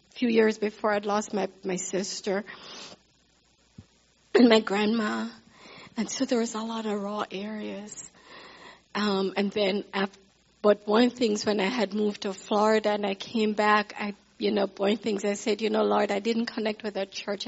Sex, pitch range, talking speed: female, 195-215 Hz, 180 wpm